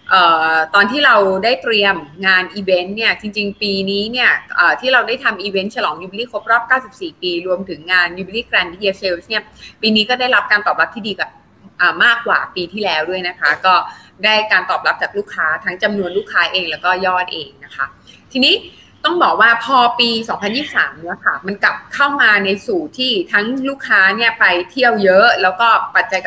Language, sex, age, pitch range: Thai, female, 20-39, 185-245 Hz